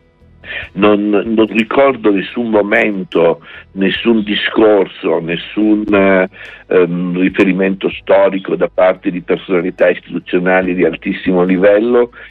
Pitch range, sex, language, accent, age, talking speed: 95-115 Hz, male, Italian, native, 60-79, 95 wpm